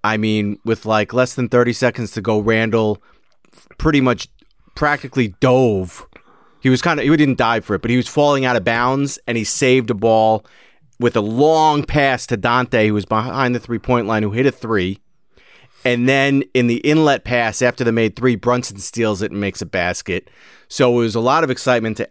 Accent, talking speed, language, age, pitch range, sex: American, 210 wpm, English, 30-49, 110-135 Hz, male